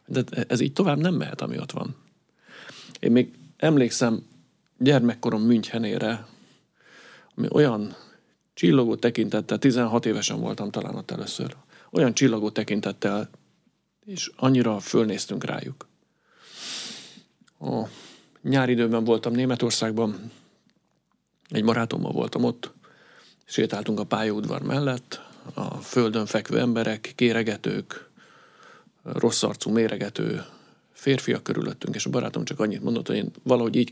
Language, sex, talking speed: Hungarian, male, 110 wpm